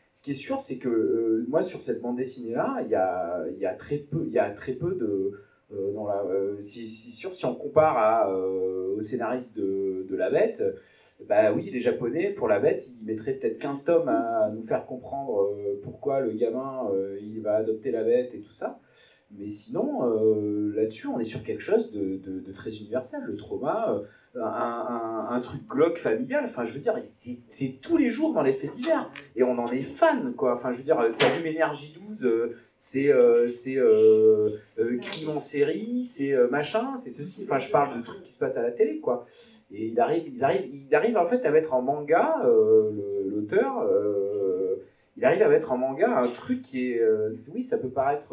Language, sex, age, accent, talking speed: French, male, 30-49, French, 210 wpm